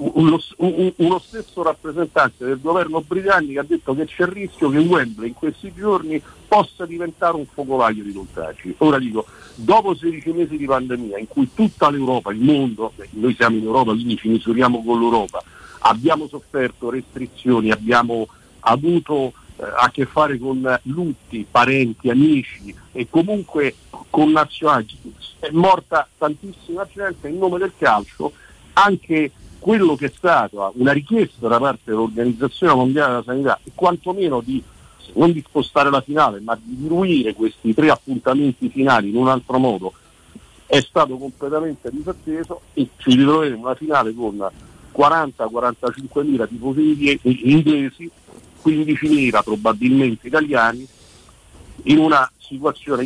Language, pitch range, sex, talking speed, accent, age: Italian, 120-160 Hz, male, 140 wpm, native, 50-69